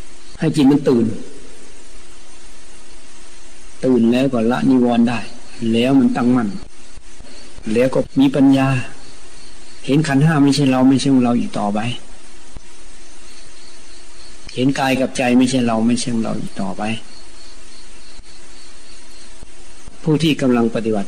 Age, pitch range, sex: 60-79, 115-135 Hz, male